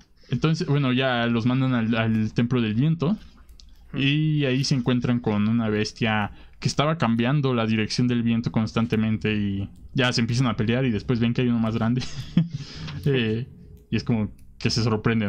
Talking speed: 180 wpm